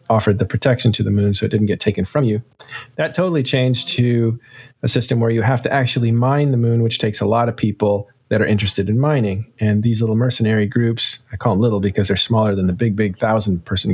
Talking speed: 240 wpm